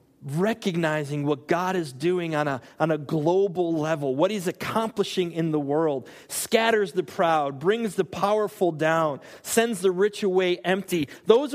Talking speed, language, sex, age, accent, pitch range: 155 wpm, English, male, 30-49, American, 160-235 Hz